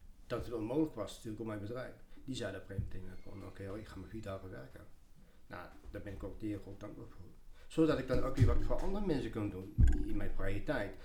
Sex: male